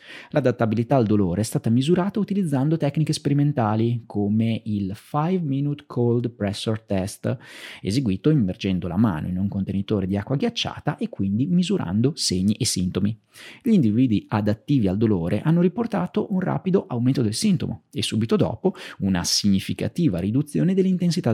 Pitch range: 105-150 Hz